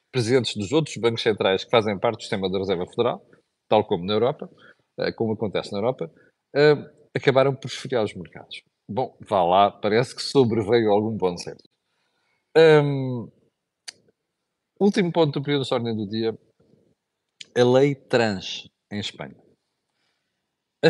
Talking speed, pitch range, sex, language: 145 wpm, 100-130 Hz, male, Portuguese